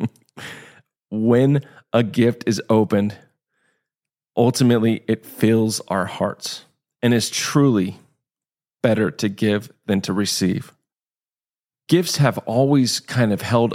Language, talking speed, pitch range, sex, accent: English, 110 wpm, 110-130 Hz, male, American